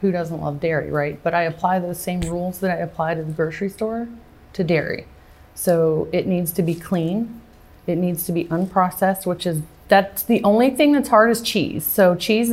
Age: 30-49